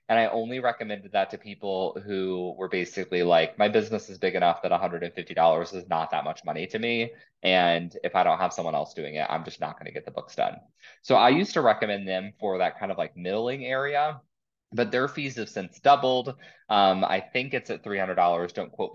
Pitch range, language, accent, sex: 85-115 Hz, English, American, male